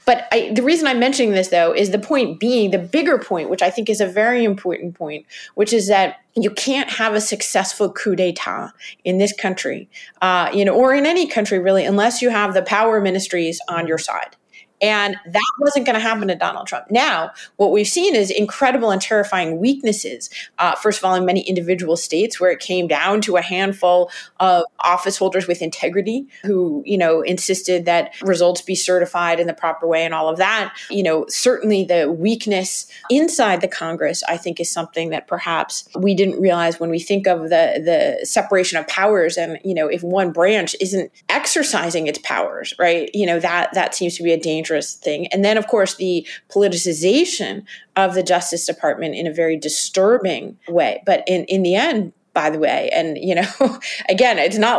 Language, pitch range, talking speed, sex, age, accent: English, 175-215 Hz, 200 wpm, female, 30-49, American